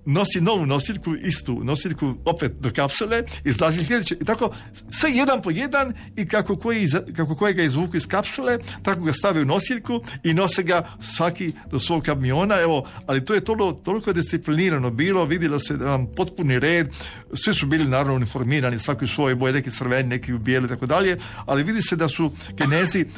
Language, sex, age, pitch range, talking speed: Croatian, male, 50-69, 135-180 Hz, 180 wpm